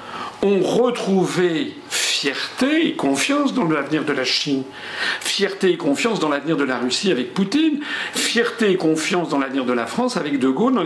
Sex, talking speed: male, 175 wpm